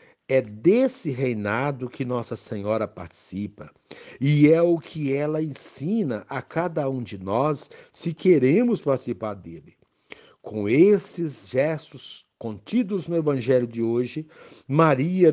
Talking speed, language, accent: 120 wpm, Portuguese, Brazilian